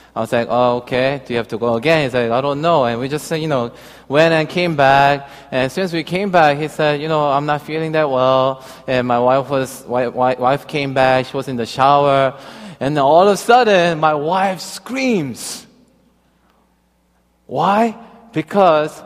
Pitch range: 150-210 Hz